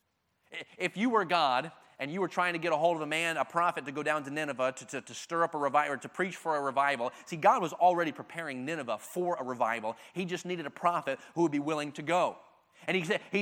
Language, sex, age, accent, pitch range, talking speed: English, male, 30-49, American, 130-195 Hz, 265 wpm